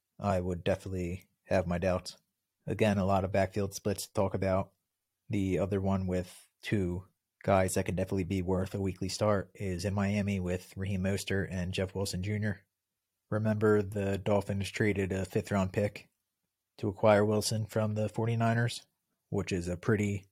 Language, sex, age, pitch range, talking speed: English, male, 30-49, 95-105 Hz, 170 wpm